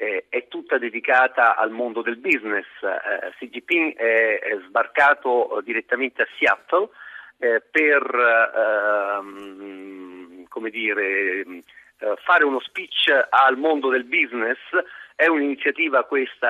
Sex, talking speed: male, 110 wpm